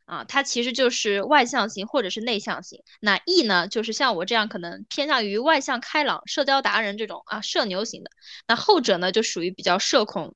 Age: 20-39